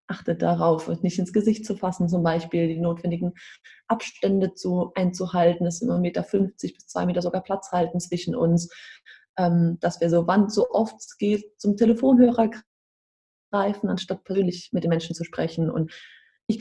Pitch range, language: 175-225 Hz, German